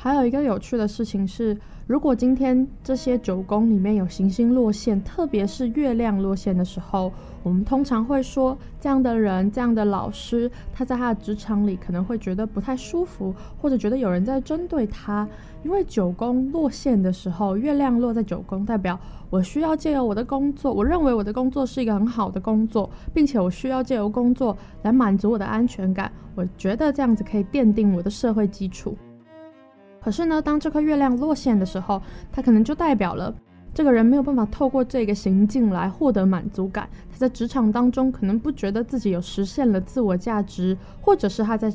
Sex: female